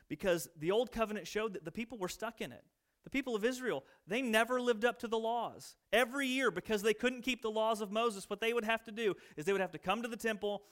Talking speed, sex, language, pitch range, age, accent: 270 wpm, male, English, 160-225 Hz, 30-49, American